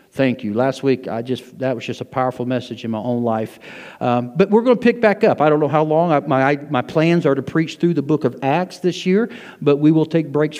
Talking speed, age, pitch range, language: 270 wpm, 50-69, 130-180 Hz, English